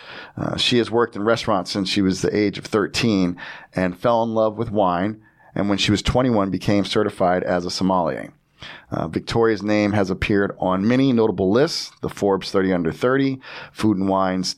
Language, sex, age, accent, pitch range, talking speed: English, male, 40-59, American, 95-115 Hz, 190 wpm